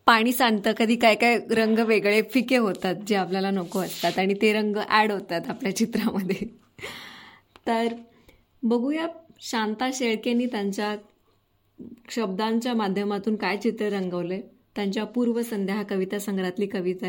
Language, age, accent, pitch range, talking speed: Marathi, 20-39, native, 185-230 Hz, 125 wpm